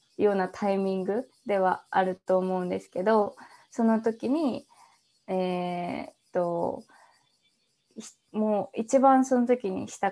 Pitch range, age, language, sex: 190-235 Hz, 20-39, Japanese, female